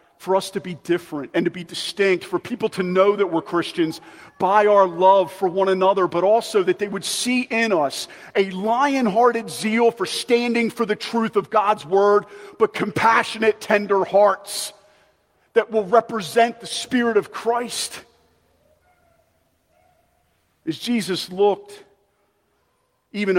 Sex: male